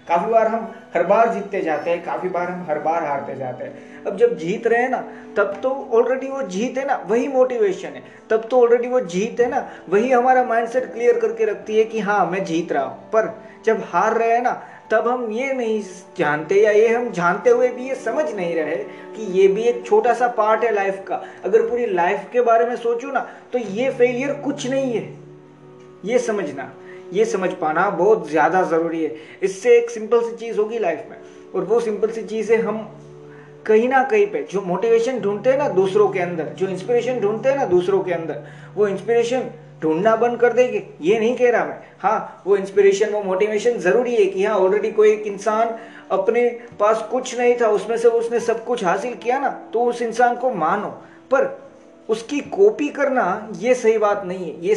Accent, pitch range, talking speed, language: native, 200-255 Hz, 210 wpm, Hindi